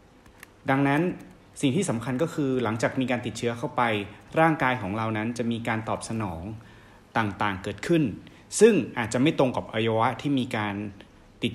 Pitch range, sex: 105-130 Hz, male